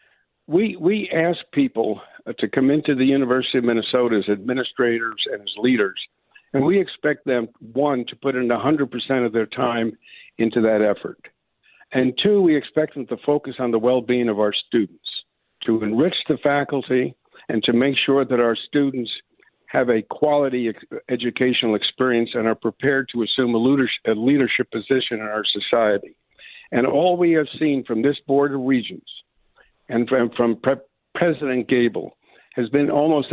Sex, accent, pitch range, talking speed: male, American, 115-140 Hz, 165 wpm